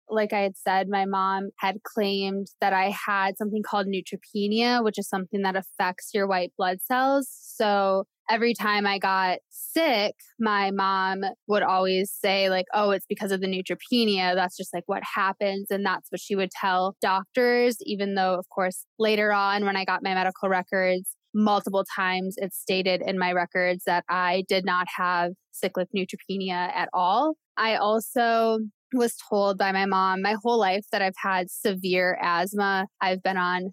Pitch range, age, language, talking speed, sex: 190-215 Hz, 20-39, English, 175 wpm, female